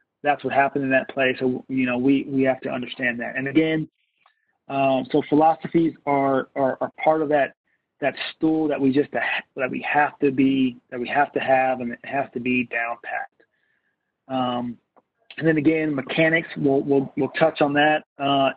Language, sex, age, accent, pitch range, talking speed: English, male, 30-49, American, 130-155 Hz, 195 wpm